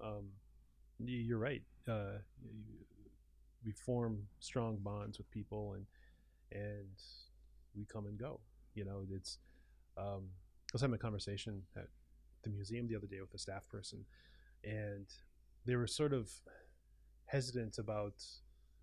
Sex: male